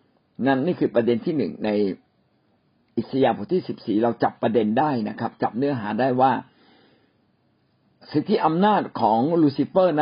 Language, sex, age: Thai, male, 60-79